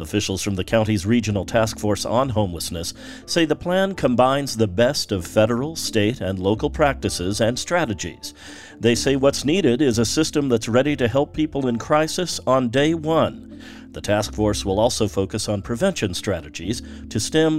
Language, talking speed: English, 175 wpm